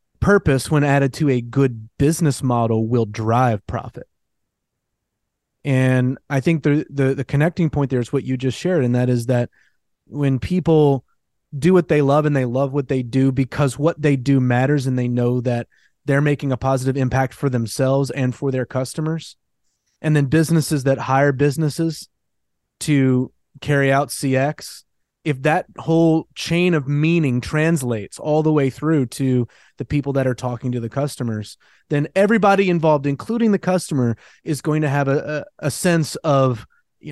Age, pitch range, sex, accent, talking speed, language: 30-49, 130-155 Hz, male, American, 170 wpm, English